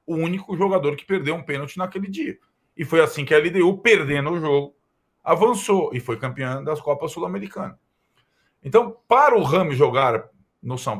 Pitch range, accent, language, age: 125-185 Hz, Brazilian, Portuguese, 40-59